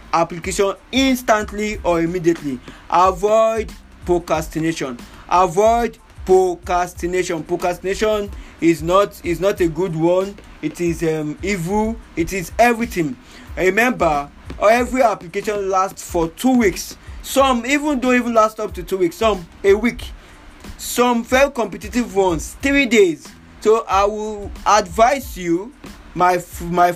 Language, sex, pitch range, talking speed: English, male, 175-225 Hz, 120 wpm